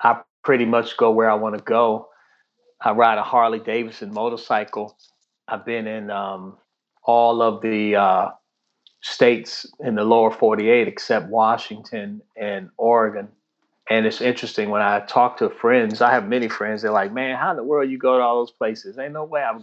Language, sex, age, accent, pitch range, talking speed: English, male, 30-49, American, 105-125 Hz, 195 wpm